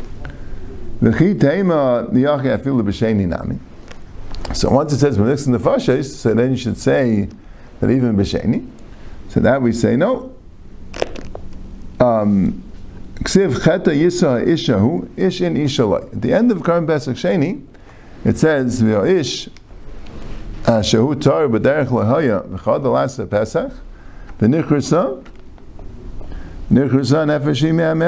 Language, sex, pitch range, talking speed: English, male, 100-160 Hz, 60 wpm